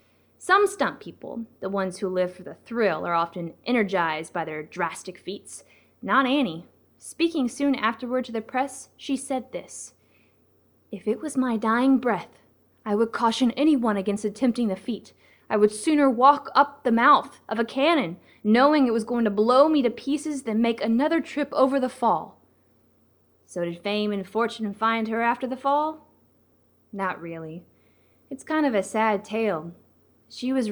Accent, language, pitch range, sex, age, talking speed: American, English, 195-255 Hz, female, 20-39, 170 wpm